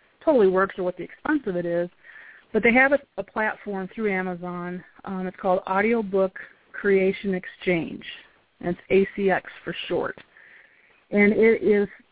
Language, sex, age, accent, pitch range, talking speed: English, female, 30-49, American, 180-220 Hz, 145 wpm